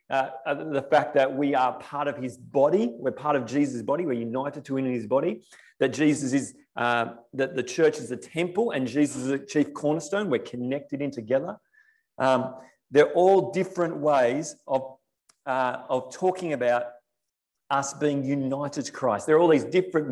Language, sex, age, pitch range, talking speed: English, male, 30-49, 125-150 Hz, 185 wpm